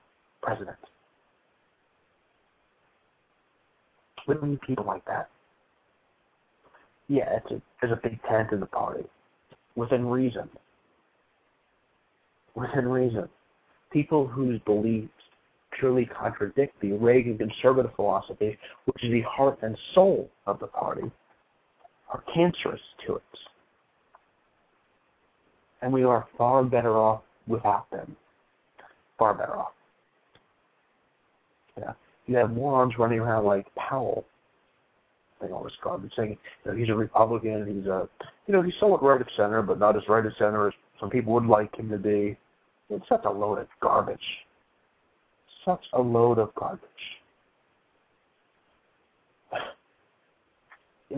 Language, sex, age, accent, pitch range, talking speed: English, male, 50-69, American, 105-130 Hz, 125 wpm